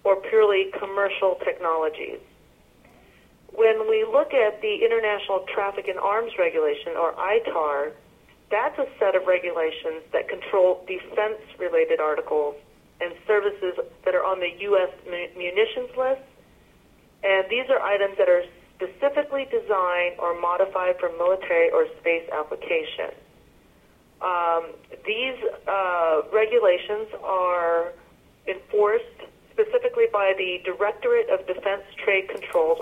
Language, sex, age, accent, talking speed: English, female, 40-59, American, 115 wpm